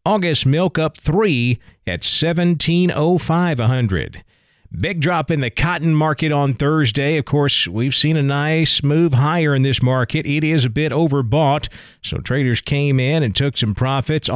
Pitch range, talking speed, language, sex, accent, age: 125-155 Hz, 160 wpm, English, male, American, 40-59